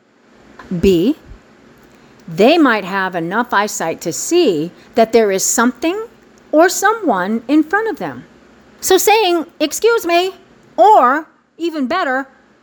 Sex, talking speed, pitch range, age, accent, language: female, 120 wpm, 190-280 Hz, 50-69, American, English